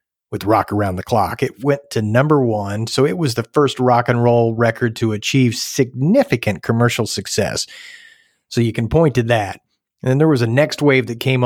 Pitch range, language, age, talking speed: 110-145 Hz, English, 40-59, 205 wpm